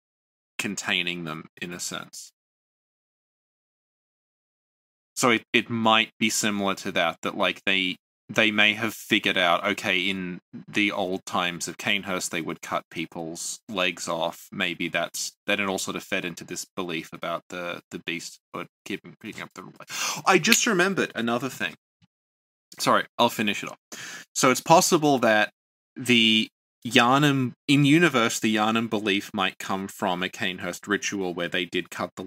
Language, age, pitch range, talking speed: English, 20-39, 90-125 Hz, 160 wpm